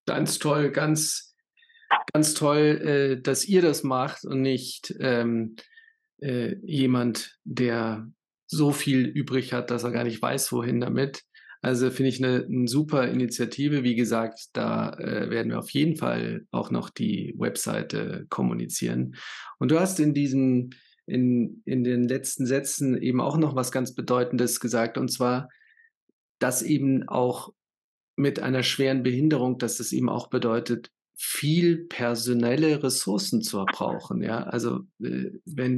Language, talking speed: German, 145 wpm